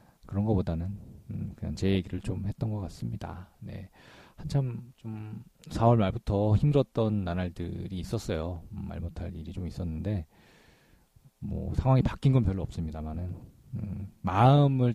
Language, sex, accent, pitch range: Korean, male, native, 90-120 Hz